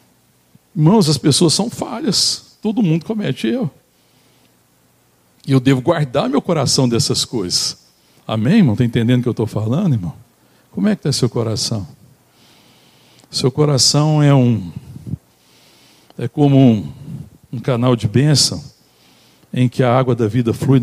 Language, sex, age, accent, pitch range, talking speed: Portuguese, male, 60-79, Brazilian, 120-150 Hz, 150 wpm